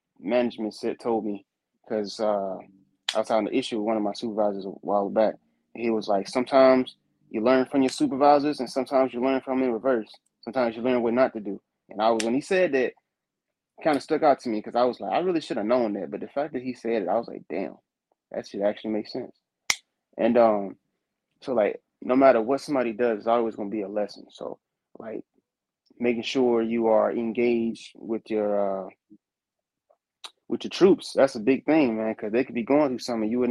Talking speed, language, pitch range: 220 wpm, English, 110-130 Hz